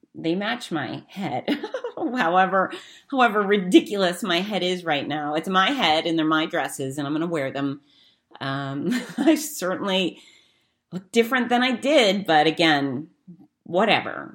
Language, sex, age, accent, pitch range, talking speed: English, female, 30-49, American, 145-195 Hz, 150 wpm